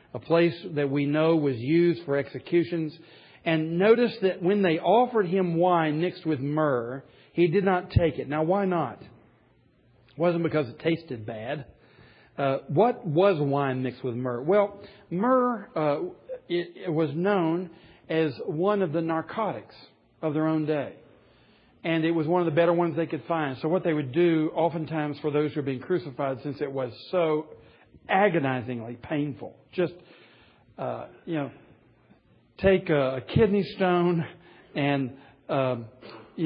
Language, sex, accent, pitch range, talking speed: English, male, American, 145-180 Hz, 160 wpm